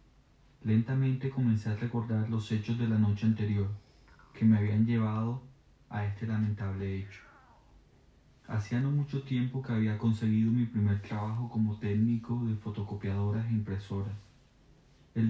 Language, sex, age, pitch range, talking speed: English, male, 30-49, 105-120 Hz, 135 wpm